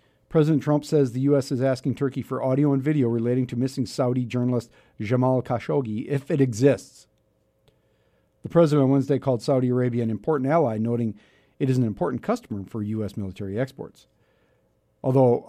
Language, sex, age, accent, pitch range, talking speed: English, male, 50-69, American, 105-135 Hz, 165 wpm